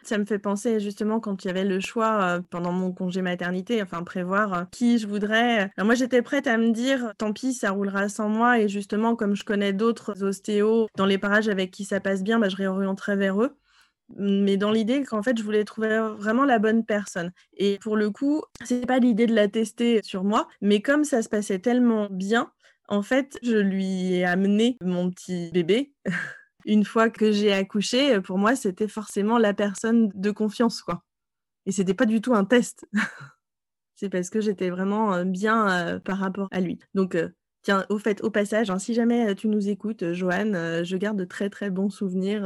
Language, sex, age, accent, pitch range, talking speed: French, female, 20-39, French, 195-235 Hz, 210 wpm